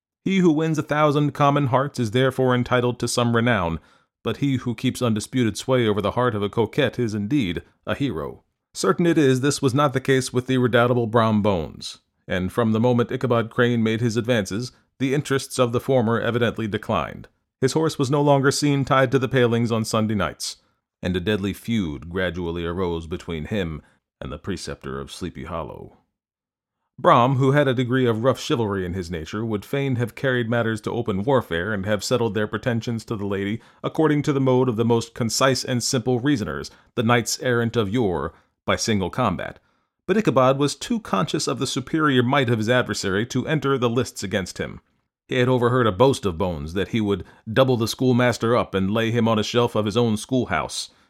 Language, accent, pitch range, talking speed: English, American, 105-130 Hz, 205 wpm